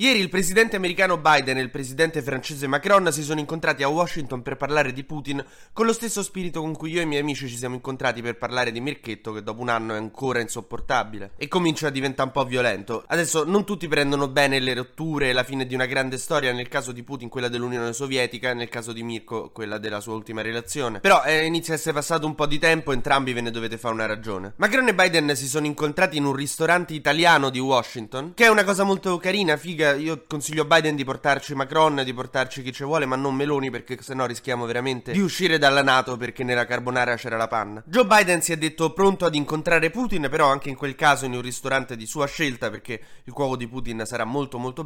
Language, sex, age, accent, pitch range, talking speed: Italian, male, 20-39, native, 125-160 Hz, 235 wpm